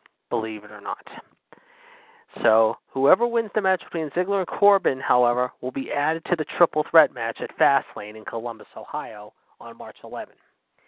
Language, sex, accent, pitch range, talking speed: English, male, American, 140-195 Hz, 165 wpm